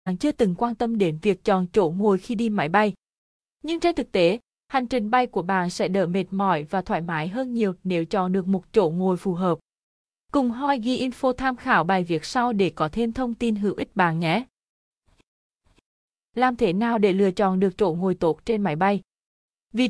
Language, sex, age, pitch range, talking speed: Vietnamese, female, 20-39, 185-240 Hz, 215 wpm